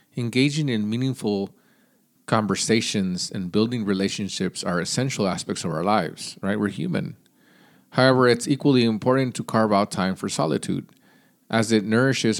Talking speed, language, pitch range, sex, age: 140 wpm, English, 100-140 Hz, male, 40-59